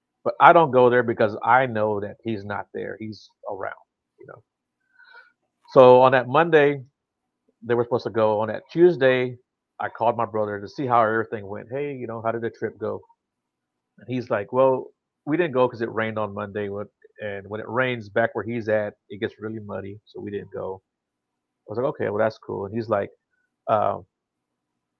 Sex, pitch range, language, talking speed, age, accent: male, 105-135 Hz, English, 200 wpm, 30-49, American